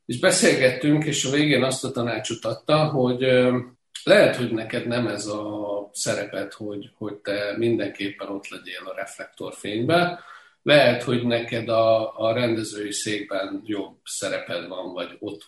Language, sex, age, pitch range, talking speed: Hungarian, male, 50-69, 110-130 Hz, 145 wpm